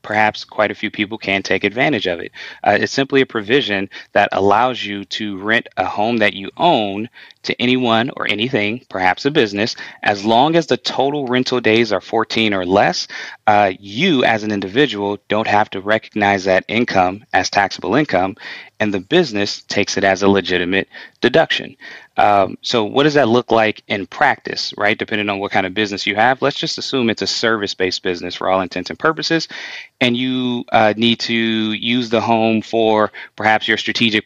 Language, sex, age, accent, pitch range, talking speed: English, male, 20-39, American, 100-125 Hz, 190 wpm